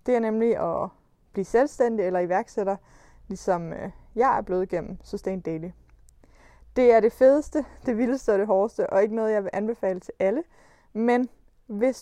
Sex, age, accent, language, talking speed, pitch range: female, 20-39, native, Danish, 175 wpm, 195-240 Hz